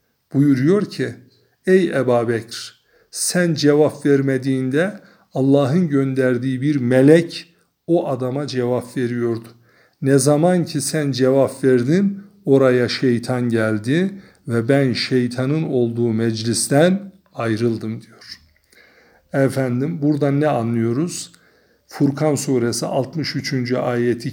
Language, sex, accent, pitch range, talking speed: Turkish, male, native, 120-150 Hz, 95 wpm